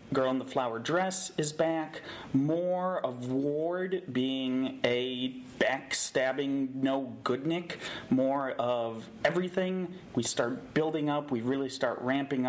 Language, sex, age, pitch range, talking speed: English, male, 30-49, 125-180 Hz, 125 wpm